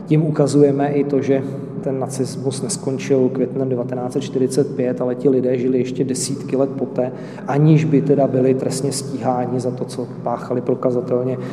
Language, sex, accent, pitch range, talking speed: Czech, male, native, 130-145 Hz, 150 wpm